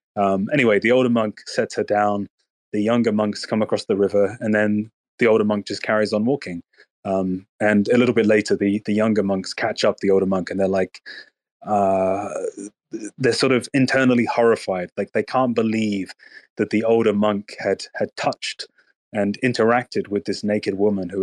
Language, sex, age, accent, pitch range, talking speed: English, male, 20-39, British, 100-125 Hz, 185 wpm